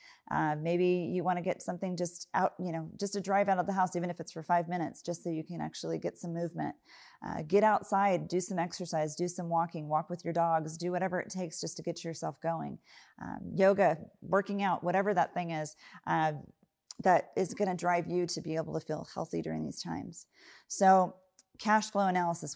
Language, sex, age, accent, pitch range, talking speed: English, female, 30-49, American, 160-185 Hz, 220 wpm